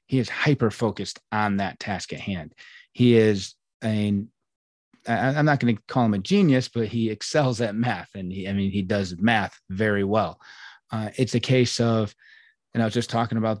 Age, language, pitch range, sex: 30-49, English, 100-120 Hz, male